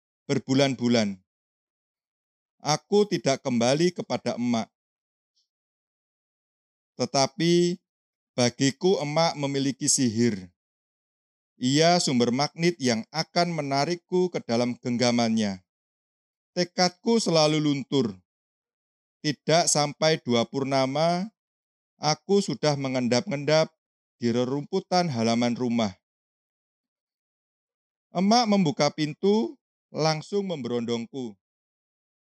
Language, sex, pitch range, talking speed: Indonesian, male, 120-180 Hz, 75 wpm